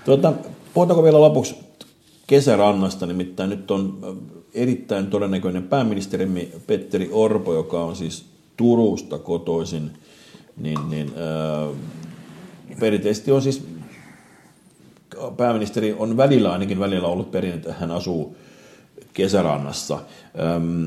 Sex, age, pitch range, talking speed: male, 50-69, 80-105 Hz, 85 wpm